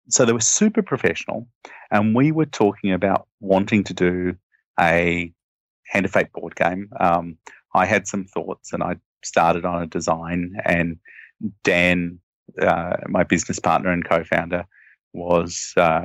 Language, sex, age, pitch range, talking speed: English, male, 30-49, 85-105 Hz, 145 wpm